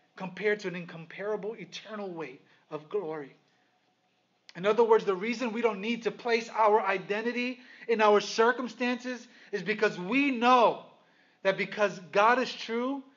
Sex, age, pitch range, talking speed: male, 30-49, 170-215 Hz, 145 wpm